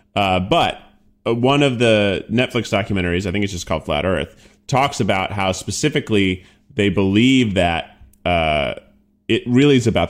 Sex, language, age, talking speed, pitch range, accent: male, English, 30-49, 155 wpm, 100-135 Hz, American